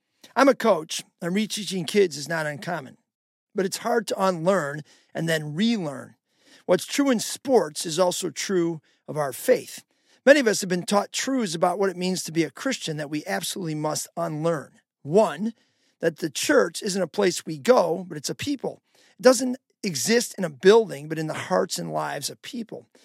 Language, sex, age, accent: English, male, 40-59, American